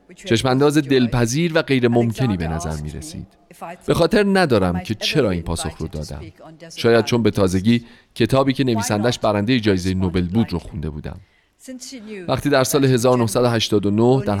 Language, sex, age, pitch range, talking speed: Persian, male, 40-59, 100-150 Hz, 155 wpm